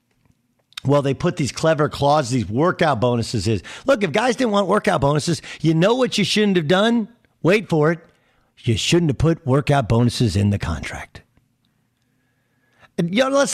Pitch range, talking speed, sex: 120-170 Hz, 165 wpm, male